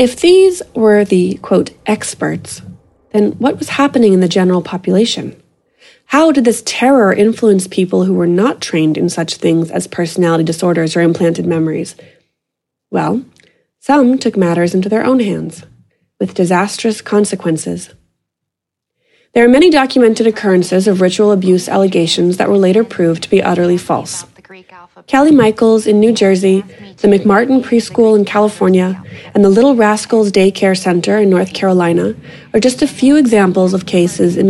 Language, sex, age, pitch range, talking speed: English, female, 20-39, 180-230 Hz, 155 wpm